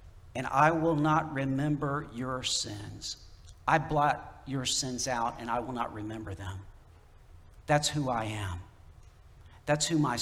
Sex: male